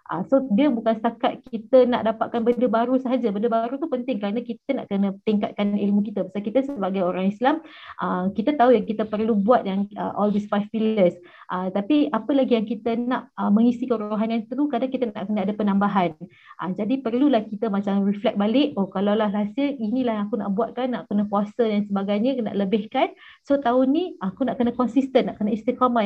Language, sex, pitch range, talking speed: Malay, female, 205-250 Hz, 205 wpm